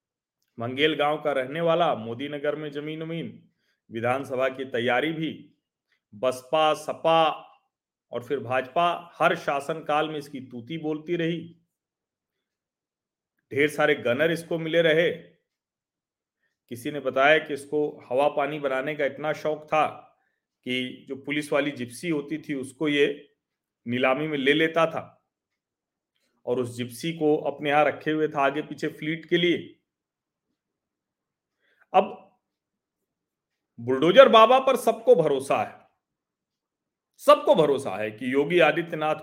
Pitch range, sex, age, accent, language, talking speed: 135-165 Hz, male, 40-59, native, Hindi, 130 wpm